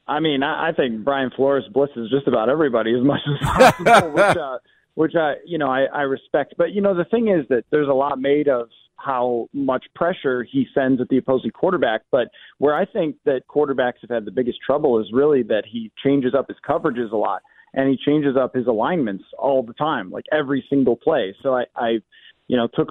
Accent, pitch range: American, 125-150 Hz